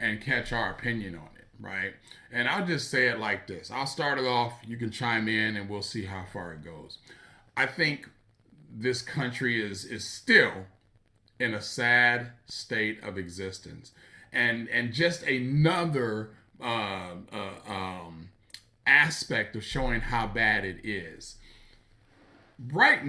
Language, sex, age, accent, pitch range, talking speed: English, male, 40-59, American, 105-135 Hz, 150 wpm